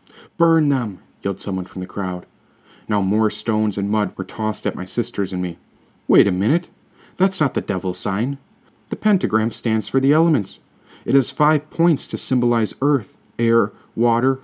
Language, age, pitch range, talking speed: English, 40-59, 100-130 Hz, 175 wpm